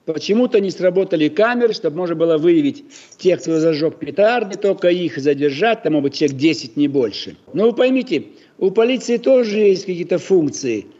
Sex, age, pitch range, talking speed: male, 60-79, 165-220 Hz, 165 wpm